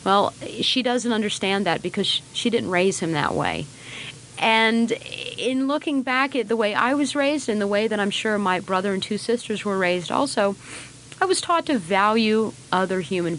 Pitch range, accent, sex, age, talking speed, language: 160-220 Hz, American, female, 30-49, 195 wpm, English